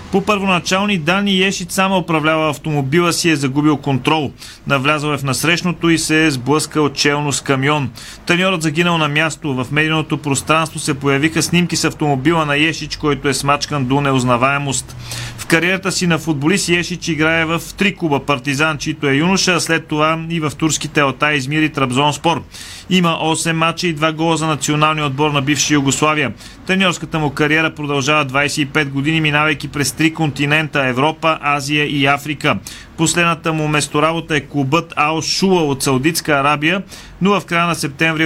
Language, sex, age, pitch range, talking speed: Bulgarian, male, 30-49, 140-160 Hz, 170 wpm